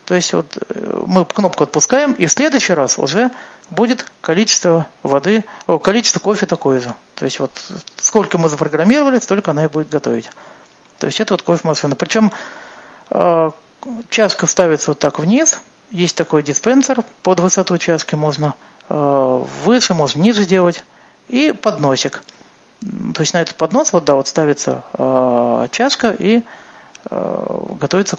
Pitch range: 150-225 Hz